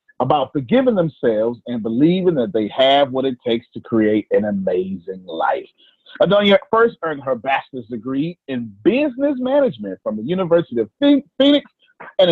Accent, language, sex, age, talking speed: American, English, male, 30-49, 150 wpm